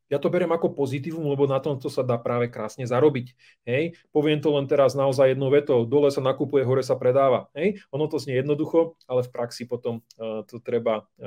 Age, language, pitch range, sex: 30-49, Slovak, 125-150 Hz, male